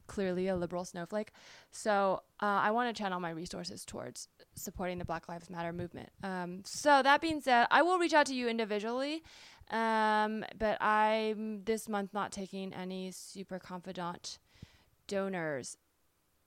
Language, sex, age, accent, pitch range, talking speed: English, female, 20-39, American, 180-225 Hz, 155 wpm